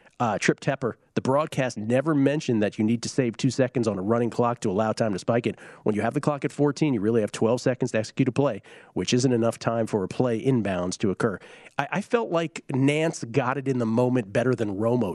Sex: male